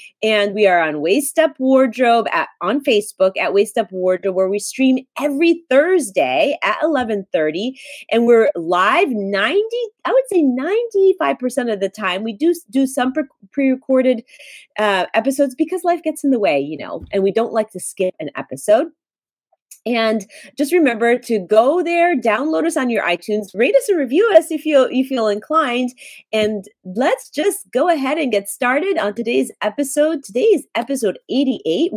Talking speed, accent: 165 wpm, American